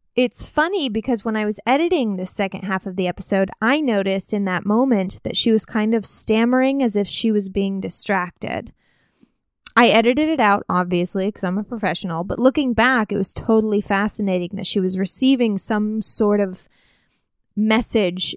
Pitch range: 195-240 Hz